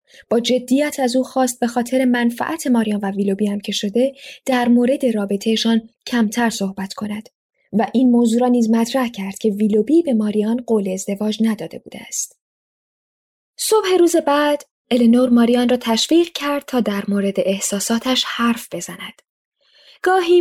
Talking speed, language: 145 wpm, Persian